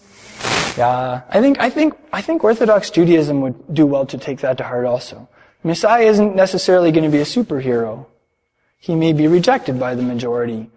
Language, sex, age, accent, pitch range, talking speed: English, male, 20-39, American, 150-205 Hz, 185 wpm